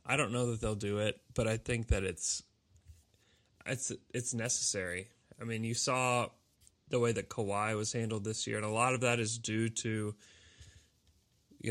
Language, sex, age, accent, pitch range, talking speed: English, male, 20-39, American, 105-120 Hz, 185 wpm